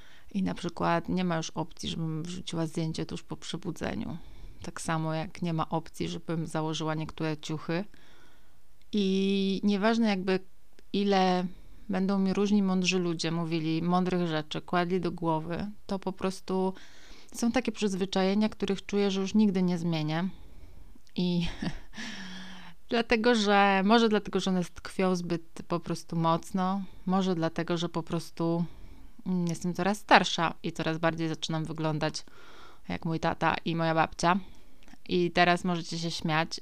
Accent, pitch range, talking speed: native, 165-195 Hz, 145 wpm